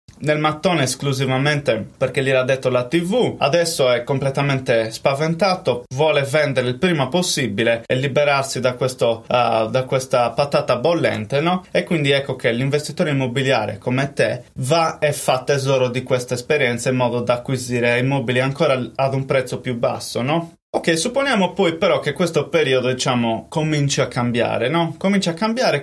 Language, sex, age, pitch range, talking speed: Italian, male, 20-39, 125-155 Hz, 165 wpm